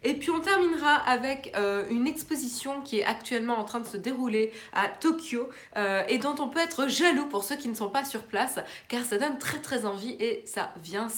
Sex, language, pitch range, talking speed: female, French, 170-245 Hz, 225 wpm